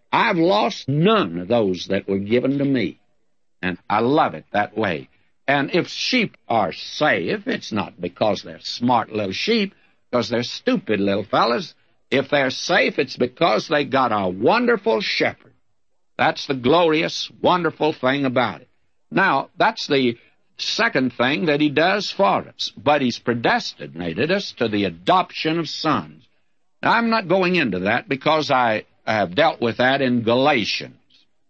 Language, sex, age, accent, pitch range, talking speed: English, male, 60-79, American, 120-170 Hz, 160 wpm